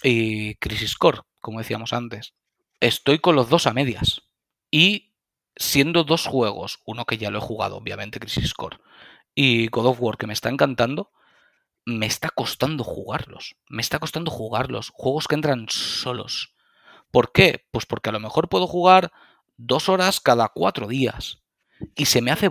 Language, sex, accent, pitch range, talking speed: Spanish, male, Spanish, 115-155 Hz, 170 wpm